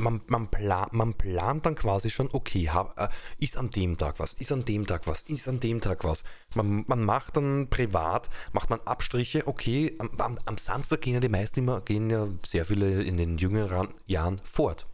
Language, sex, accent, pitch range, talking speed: German, male, German, 90-115 Hz, 215 wpm